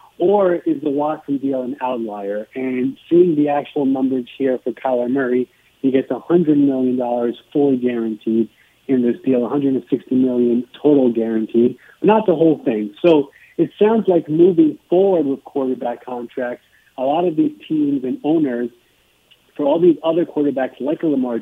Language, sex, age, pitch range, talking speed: English, male, 40-59, 125-155 Hz, 155 wpm